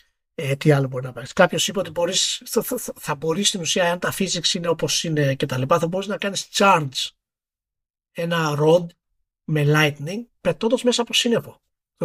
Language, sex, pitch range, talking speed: Greek, male, 150-210 Hz, 195 wpm